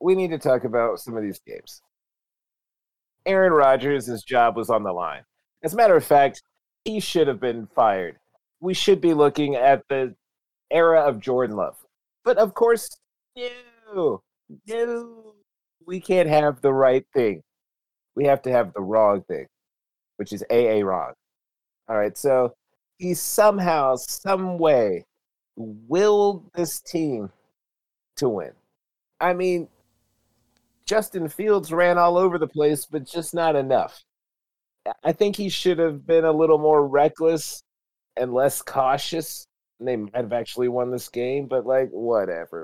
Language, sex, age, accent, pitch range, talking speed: English, male, 40-59, American, 125-175 Hz, 150 wpm